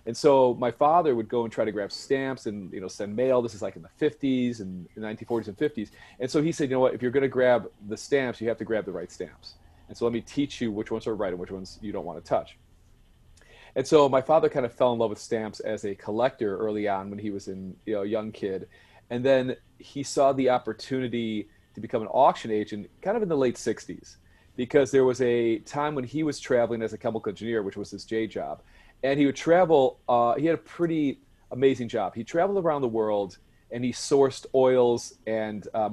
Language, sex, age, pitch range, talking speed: English, male, 40-59, 105-130 Hz, 240 wpm